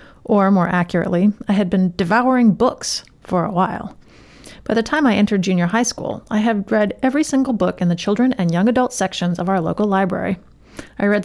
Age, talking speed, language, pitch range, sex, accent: 30-49, 205 wpm, English, 180-235 Hz, female, American